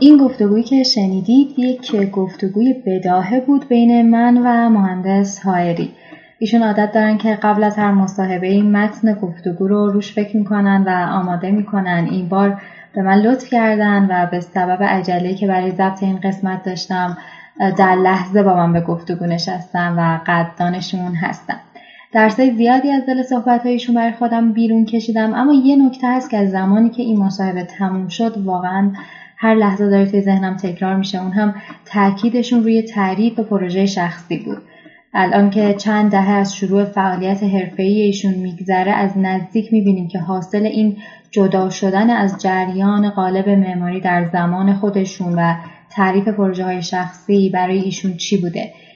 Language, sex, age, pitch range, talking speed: Persian, female, 10-29, 185-220 Hz, 155 wpm